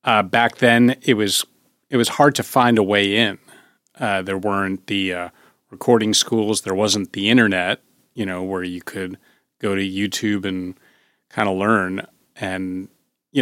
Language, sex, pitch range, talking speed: English, male, 95-115 Hz, 180 wpm